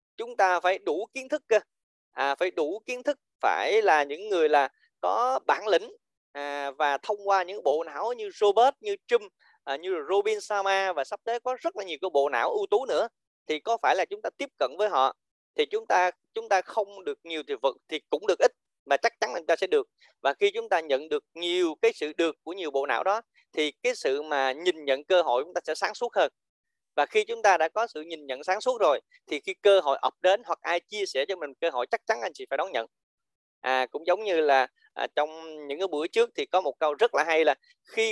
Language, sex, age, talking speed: Vietnamese, male, 20-39, 255 wpm